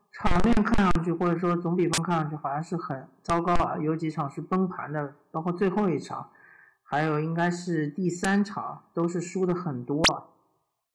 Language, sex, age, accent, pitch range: Chinese, male, 50-69, native, 150-200 Hz